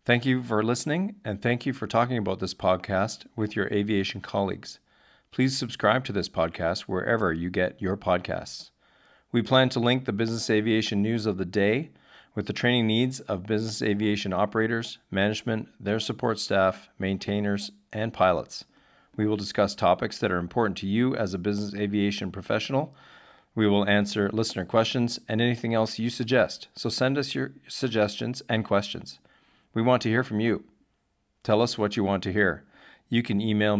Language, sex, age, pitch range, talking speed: English, male, 40-59, 100-120 Hz, 175 wpm